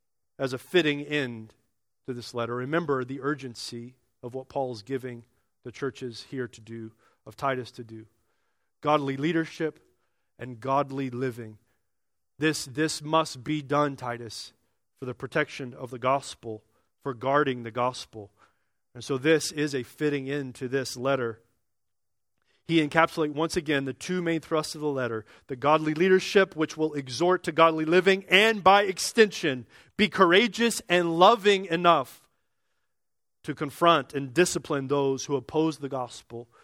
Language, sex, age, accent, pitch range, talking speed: English, male, 40-59, American, 120-160 Hz, 150 wpm